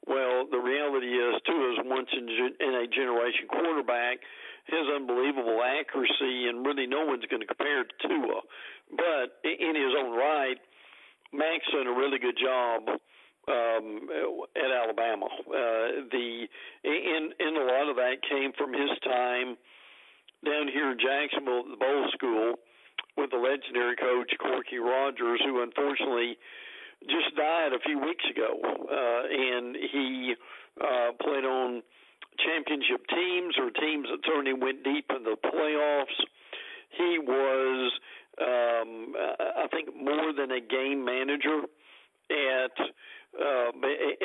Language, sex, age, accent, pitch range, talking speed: English, male, 50-69, American, 125-145 Hz, 135 wpm